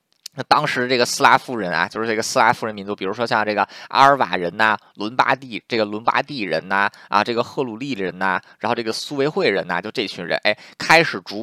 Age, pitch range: 20-39, 95-120 Hz